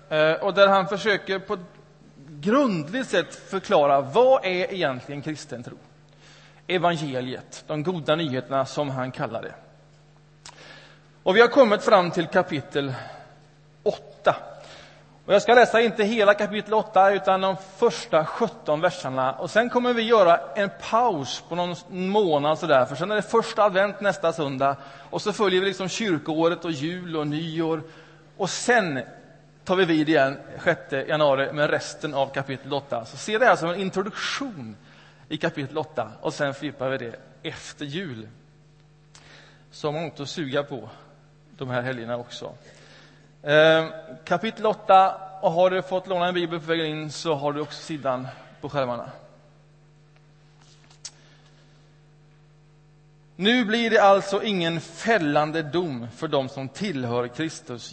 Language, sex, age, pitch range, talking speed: Swedish, male, 30-49, 145-190 Hz, 150 wpm